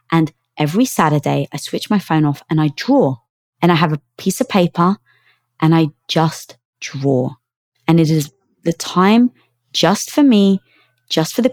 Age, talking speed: 20-39, 170 wpm